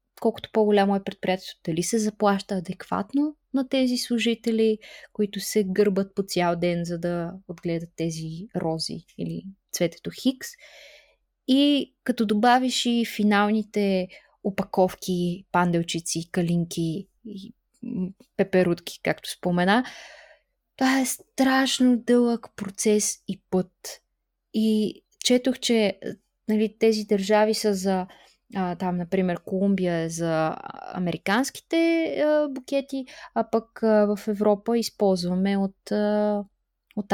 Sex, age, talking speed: female, 20-39, 105 wpm